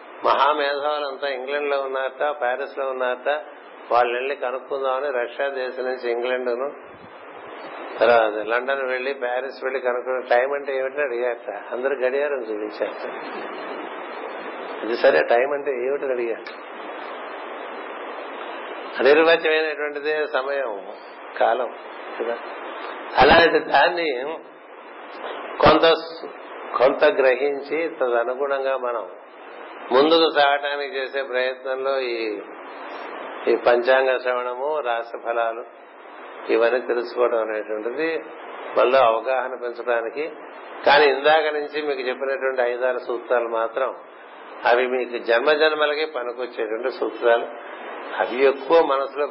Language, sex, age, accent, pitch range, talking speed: Telugu, male, 60-79, native, 120-145 Hz, 90 wpm